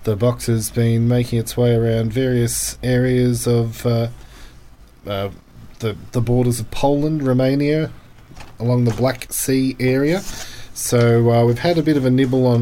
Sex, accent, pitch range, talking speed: male, Australian, 115-135 Hz, 160 wpm